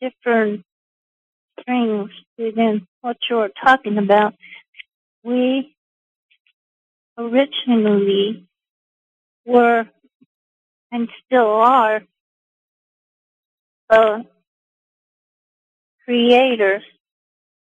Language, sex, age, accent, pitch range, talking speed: English, female, 50-69, American, 210-245 Hz, 50 wpm